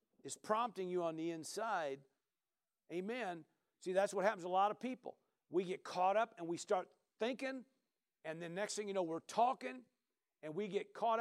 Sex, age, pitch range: male, 50-69, 185-255 Hz